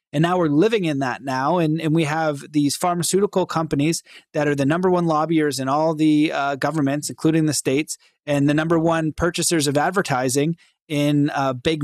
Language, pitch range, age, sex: English, 150-180 Hz, 30-49, male